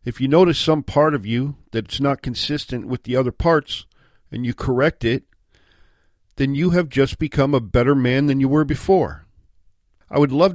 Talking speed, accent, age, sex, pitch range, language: 190 wpm, American, 50-69, male, 105-135 Hz, English